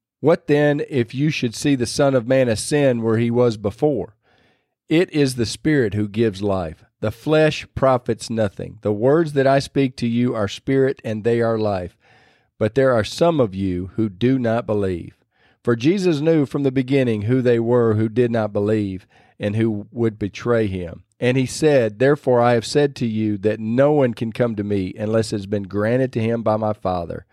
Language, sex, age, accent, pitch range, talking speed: English, male, 40-59, American, 110-140 Hz, 205 wpm